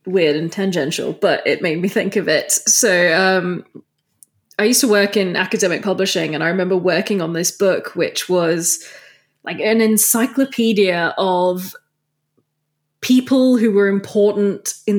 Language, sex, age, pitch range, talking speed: English, female, 20-39, 180-225 Hz, 150 wpm